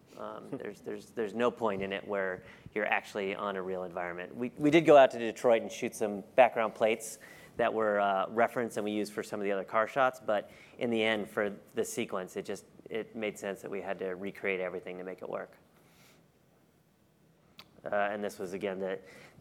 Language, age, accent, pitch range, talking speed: English, 30-49, American, 100-120 Hz, 215 wpm